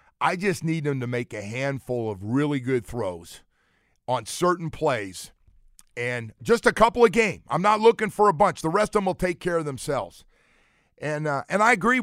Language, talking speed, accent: English, 205 wpm, American